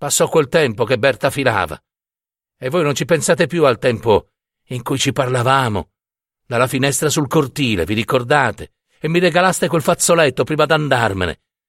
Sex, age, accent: male, 60-79, native